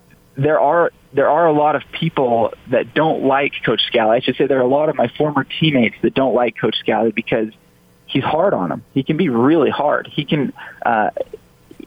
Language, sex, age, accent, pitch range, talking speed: English, male, 20-39, American, 110-135 Hz, 210 wpm